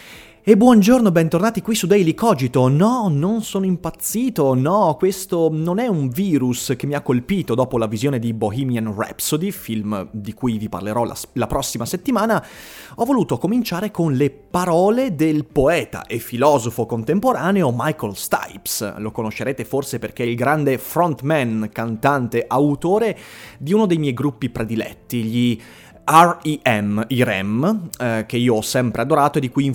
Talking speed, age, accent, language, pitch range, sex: 160 wpm, 30-49, native, Italian, 115-180 Hz, male